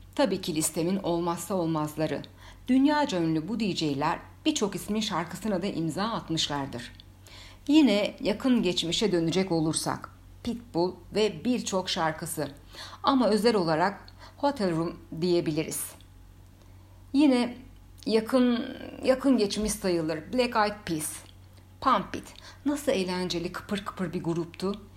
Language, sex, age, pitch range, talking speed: Turkish, female, 60-79, 145-215 Hz, 110 wpm